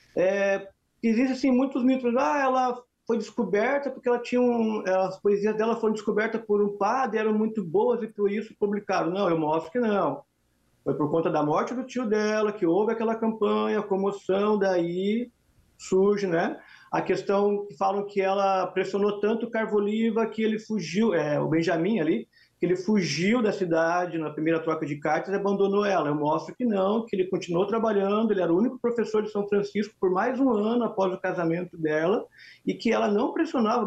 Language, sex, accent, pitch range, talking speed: English, male, Brazilian, 175-225 Hz, 190 wpm